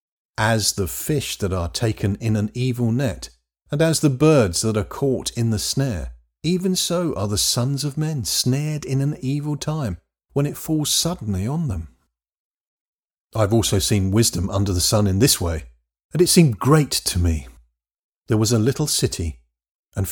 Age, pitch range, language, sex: 40-59, 90-135 Hz, English, male